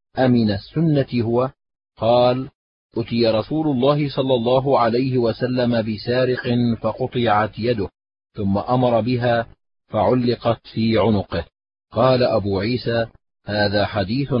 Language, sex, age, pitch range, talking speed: Arabic, male, 40-59, 110-130 Hz, 105 wpm